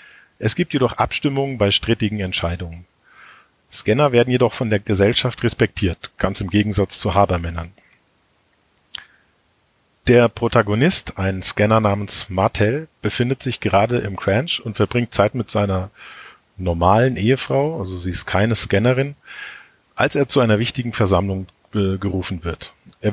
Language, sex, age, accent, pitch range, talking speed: German, male, 40-59, German, 95-120 Hz, 135 wpm